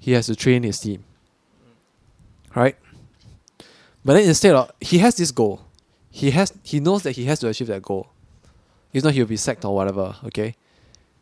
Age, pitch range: 20-39, 100-135 Hz